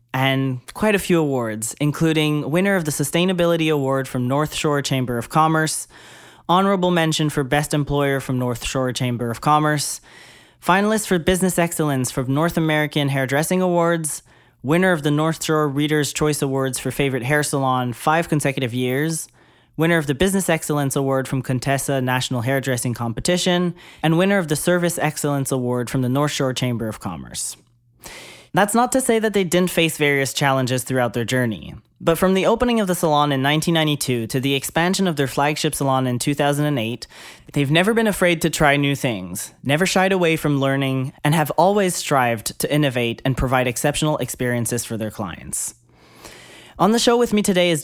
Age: 20-39